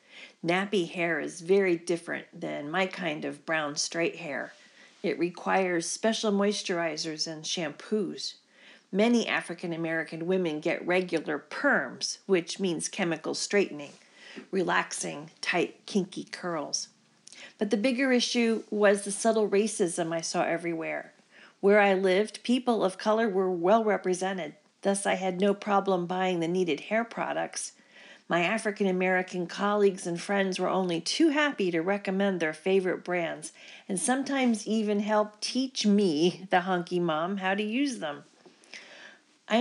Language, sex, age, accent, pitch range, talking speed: English, female, 40-59, American, 175-215 Hz, 140 wpm